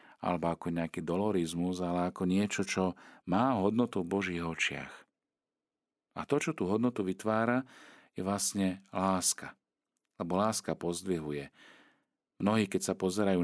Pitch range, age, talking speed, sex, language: 85-110 Hz, 40-59, 130 wpm, male, Slovak